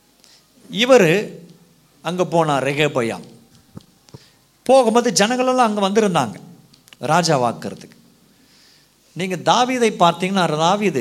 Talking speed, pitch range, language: 75 wpm, 160-225 Hz, Tamil